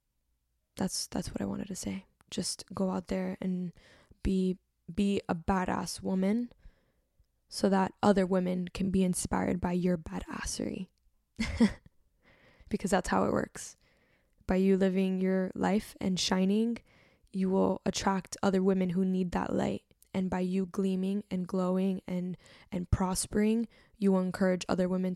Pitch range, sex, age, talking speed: 180-195 Hz, female, 10-29, 150 wpm